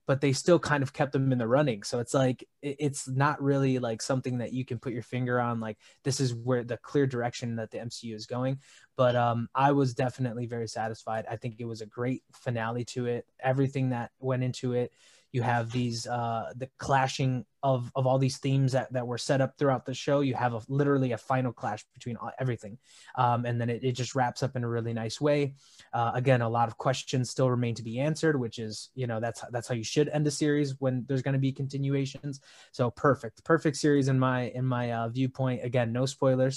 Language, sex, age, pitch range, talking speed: English, male, 20-39, 120-135 Hz, 235 wpm